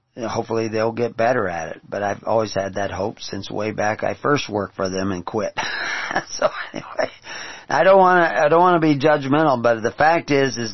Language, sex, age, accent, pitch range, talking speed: English, male, 40-59, American, 110-150 Hz, 205 wpm